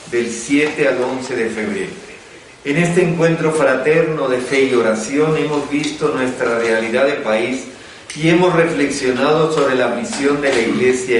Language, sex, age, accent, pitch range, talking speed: Spanish, male, 50-69, Mexican, 130-160 Hz, 155 wpm